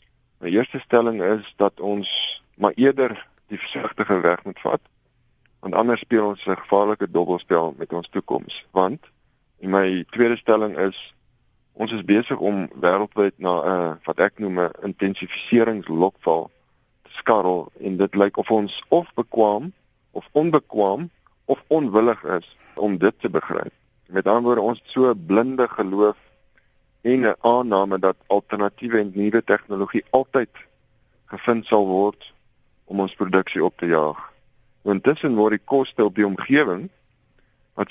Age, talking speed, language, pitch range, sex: 50-69, 140 wpm, Dutch, 100-120 Hz, male